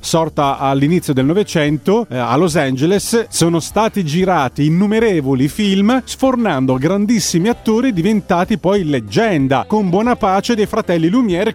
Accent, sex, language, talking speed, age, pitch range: native, male, Italian, 125 wpm, 30-49, 160-205 Hz